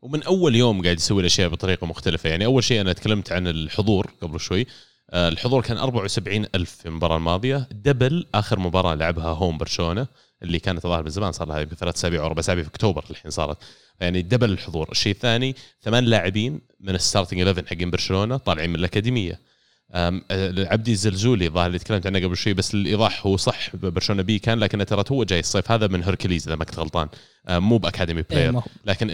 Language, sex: Arabic, male